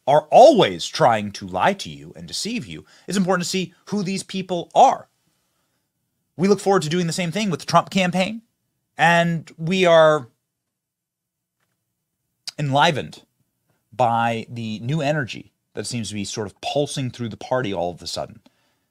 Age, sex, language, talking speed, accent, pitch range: 30-49, male, English, 165 wpm, American, 120-185 Hz